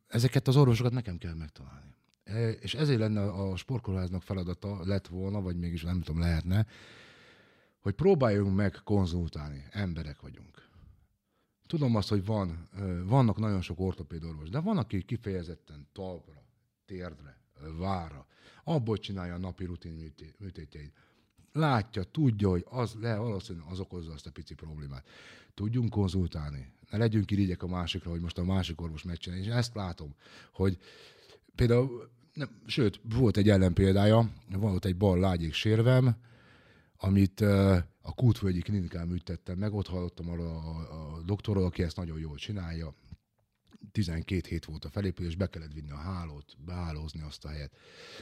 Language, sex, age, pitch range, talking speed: Hungarian, male, 60-79, 85-110 Hz, 145 wpm